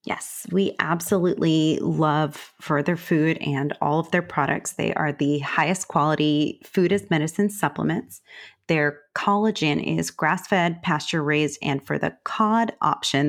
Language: English